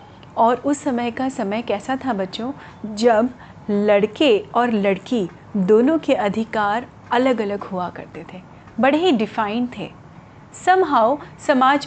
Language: Hindi